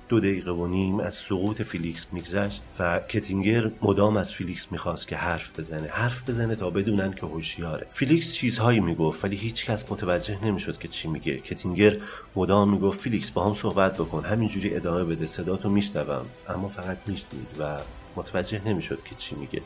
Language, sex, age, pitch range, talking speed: Persian, male, 40-59, 85-105 Hz, 170 wpm